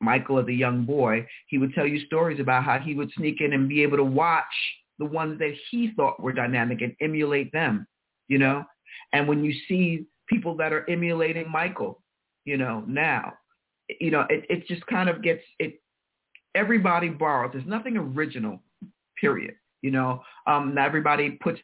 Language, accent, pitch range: English, American, 125-165 Hz